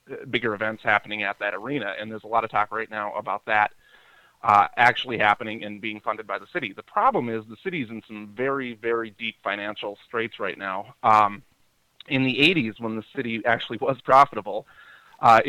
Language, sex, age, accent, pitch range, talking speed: English, male, 30-49, American, 105-120 Hz, 195 wpm